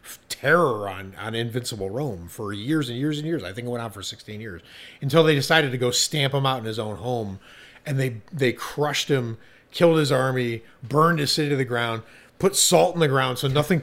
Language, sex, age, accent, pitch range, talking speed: English, male, 30-49, American, 115-155 Hz, 225 wpm